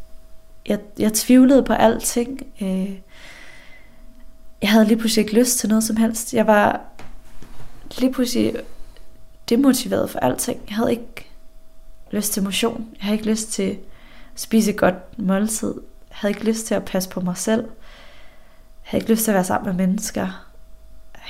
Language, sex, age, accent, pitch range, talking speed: Danish, female, 20-39, native, 190-230 Hz, 165 wpm